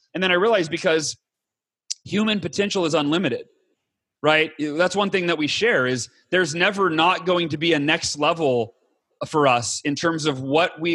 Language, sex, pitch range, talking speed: English, male, 145-180 Hz, 180 wpm